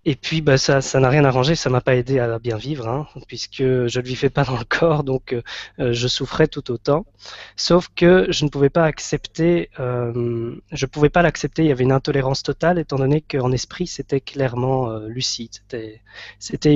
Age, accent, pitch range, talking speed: 20-39, French, 120-145 Hz, 205 wpm